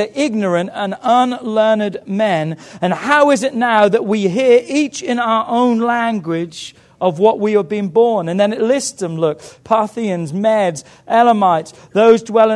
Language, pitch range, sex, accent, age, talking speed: English, 205-245 Hz, male, British, 40-59, 165 wpm